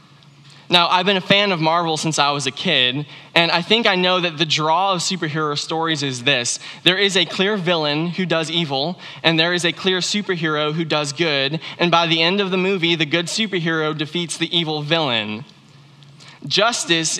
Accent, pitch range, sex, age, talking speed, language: American, 145-180 Hz, male, 20-39, 200 wpm, English